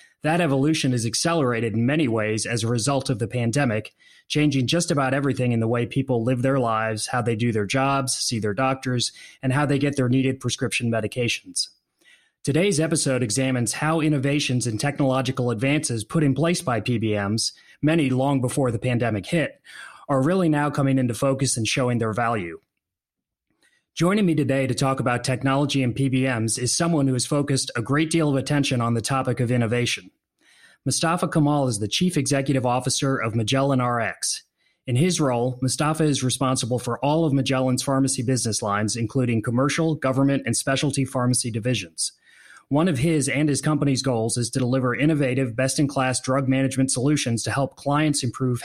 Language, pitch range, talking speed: English, 120-145 Hz, 180 wpm